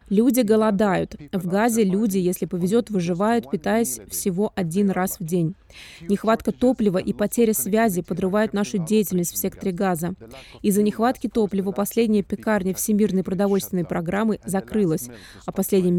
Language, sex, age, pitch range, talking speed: Russian, female, 20-39, 185-220 Hz, 135 wpm